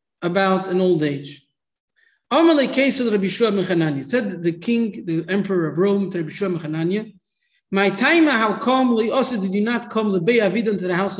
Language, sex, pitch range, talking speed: English, male, 165-225 Hz, 135 wpm